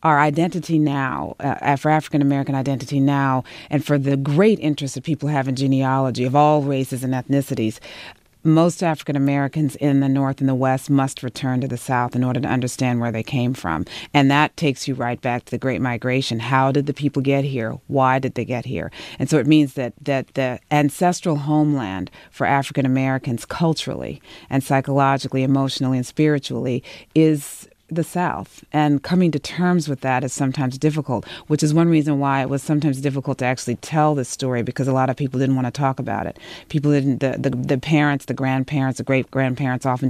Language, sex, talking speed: English, female, 195 wpm